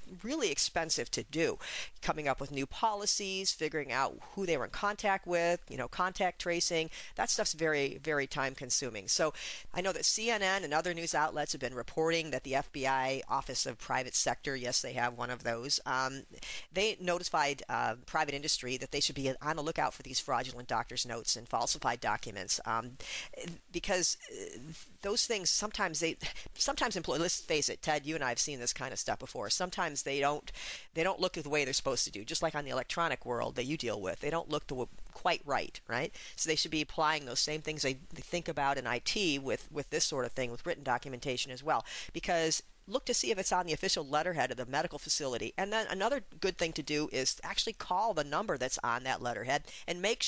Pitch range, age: 135-180 Hz, 40-59